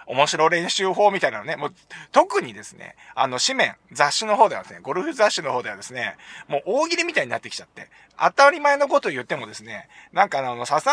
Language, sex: Japanese, male